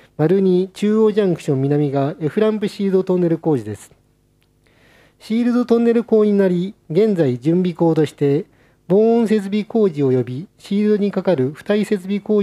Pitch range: 135-205 Hz